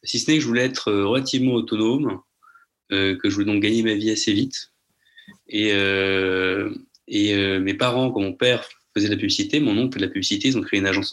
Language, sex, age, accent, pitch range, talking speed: French, male, 30-49, French, 100-130 Hz, 225 wpm